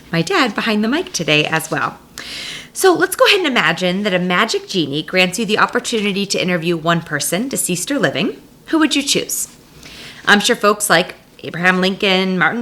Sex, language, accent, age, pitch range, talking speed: female, English, American, 30-49, 170-225 Hz, 190 wpm